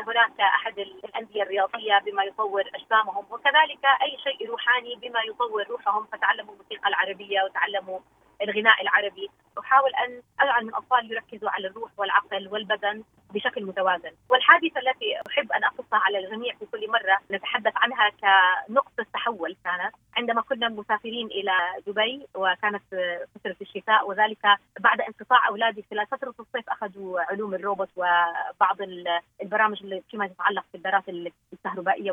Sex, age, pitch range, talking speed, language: female, 30-49, 200-245 Hz, 125 wpm, Arabic